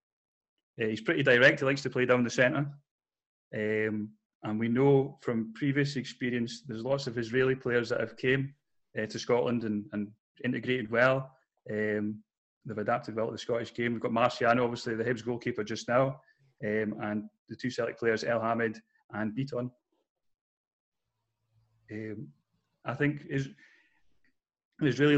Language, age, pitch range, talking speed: English, 30-49, 115-135 Hz, 150 wpm